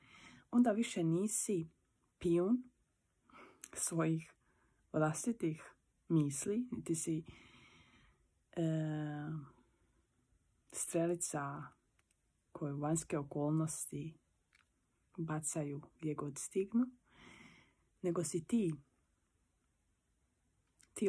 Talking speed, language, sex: 65 wpm, Croatian, female